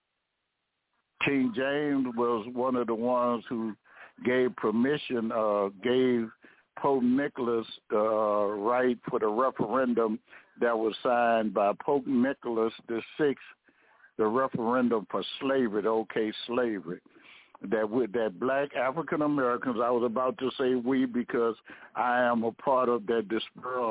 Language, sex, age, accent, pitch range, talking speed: English, male, 60-79, American, 115-140 Hz, 135 wpm